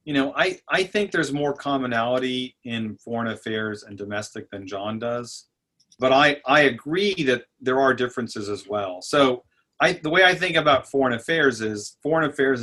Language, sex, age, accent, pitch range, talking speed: English, male, 40-59, American, 110-140 Hz, 180 wpm